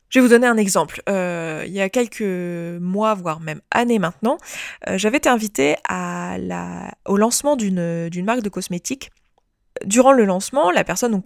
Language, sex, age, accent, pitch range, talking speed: French, female, 20-39, French, 175-220 Hz, 180 wpm